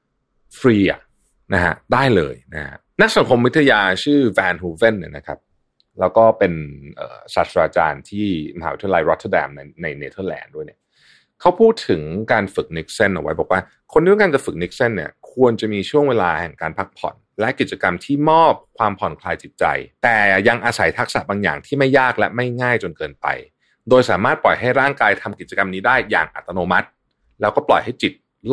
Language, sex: Thai, male